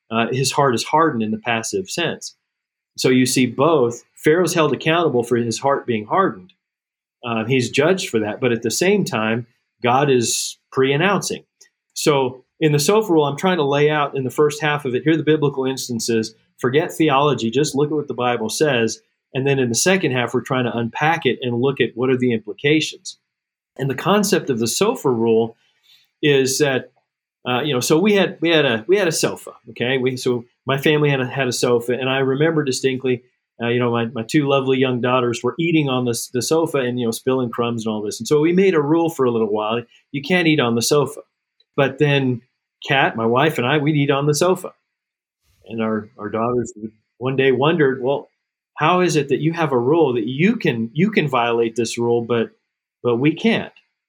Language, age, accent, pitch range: English, 40-59, American, 120-150 Hz